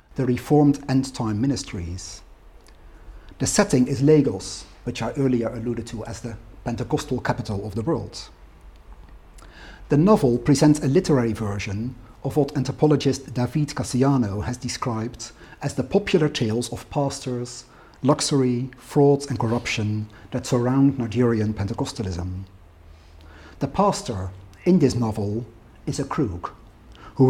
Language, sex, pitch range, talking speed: English, male, 105-140 Hz, 125 wpm